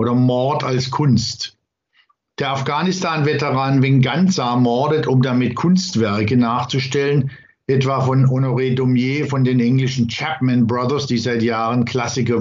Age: 60-79